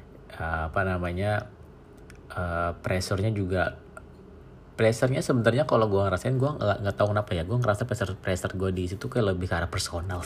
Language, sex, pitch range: Indonesian, male, 85-110 Hz